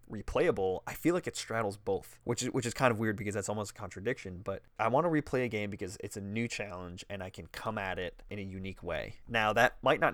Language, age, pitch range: English, 20-39, 100-115 Hz